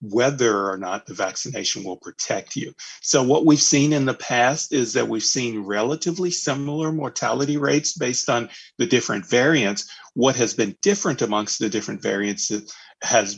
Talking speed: 165 wpm